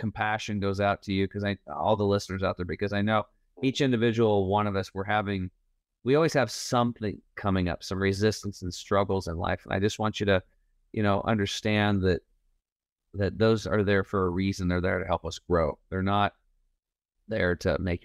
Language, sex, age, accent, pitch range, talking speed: English, male, 30-49, American, 90-105 Hz, 205 wpm